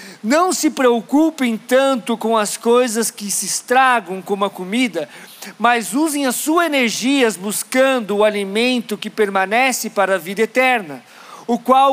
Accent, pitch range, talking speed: Brazilian, 215-260 Hz, 145 wpm